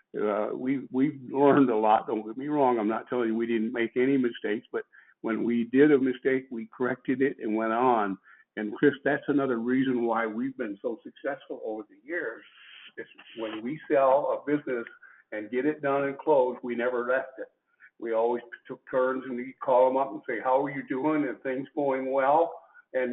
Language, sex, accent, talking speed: English, male, American, 210 wpm